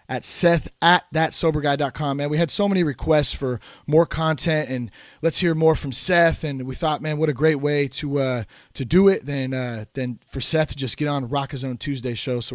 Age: 30-49